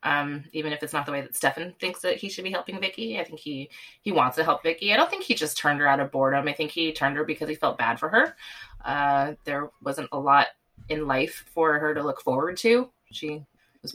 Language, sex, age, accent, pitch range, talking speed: English, female, 20-39, American, 145-180 Hz, 260 wpm